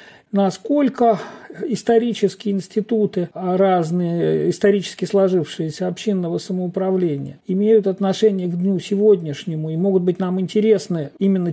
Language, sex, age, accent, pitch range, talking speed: Russian, male, 50-69, native, 175-220 Hz, 100 wpm